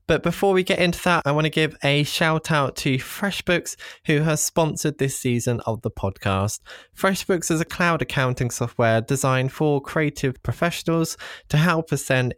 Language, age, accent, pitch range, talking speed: English, 20-39, British, 115-155 Hz, 180 wpm